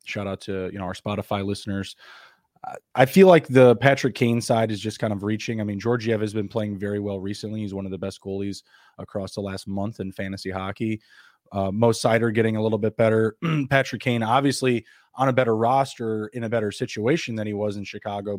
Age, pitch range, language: 20-39, 100-120 Hz, English